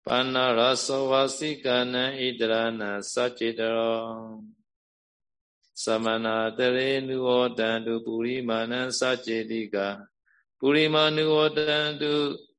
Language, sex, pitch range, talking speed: Vietnamese, male, 115-140 Hz, 50 wpm